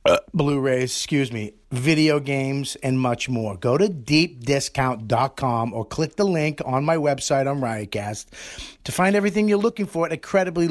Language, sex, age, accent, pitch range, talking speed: English, male, 30-49, American, 135-180 Hz, 165 wpm